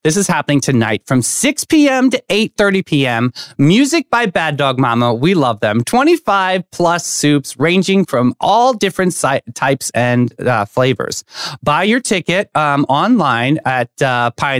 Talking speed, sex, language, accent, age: 150 wpm, male, English, American, 30-49